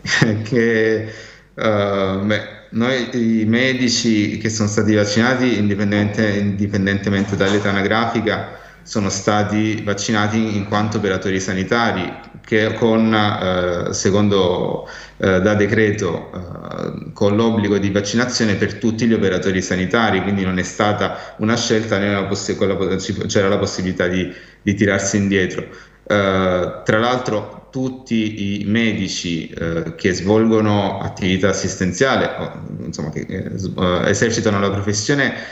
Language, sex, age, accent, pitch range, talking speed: Italian, male, 30-49, native, 95-110 Hz, 125 wpm